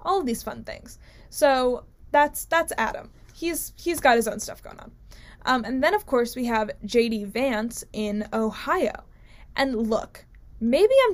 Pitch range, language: 220-275 Hz, English